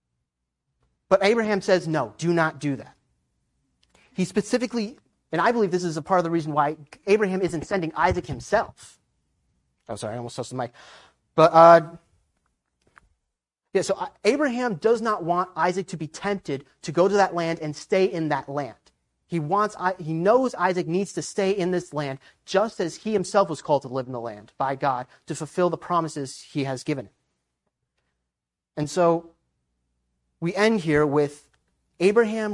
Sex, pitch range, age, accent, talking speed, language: male, 135-190 Hz, 30-49, American, 170 wpm, English